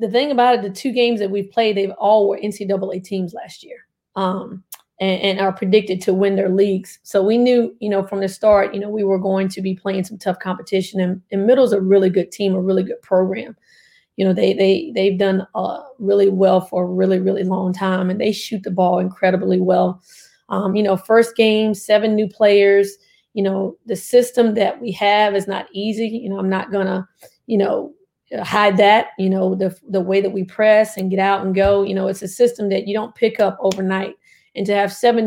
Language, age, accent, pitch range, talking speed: English, 30-49, American, 190-215 Hz, 230 wpm